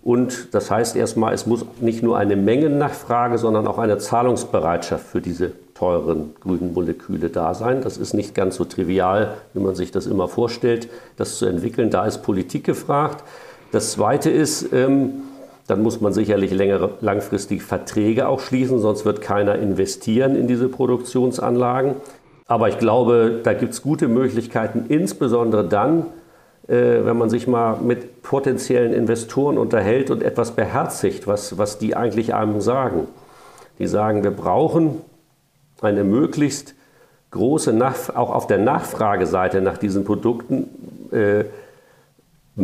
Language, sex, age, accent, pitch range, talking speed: German, male, 50-69, German, 105-130 Hz, 140 wpm